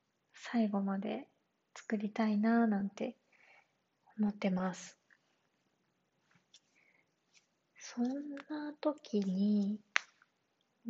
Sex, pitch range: female, 205-255 Hz